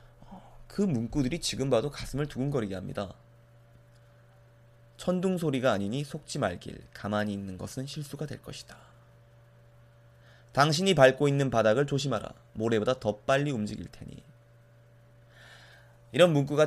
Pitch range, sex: 115-135 Hz, male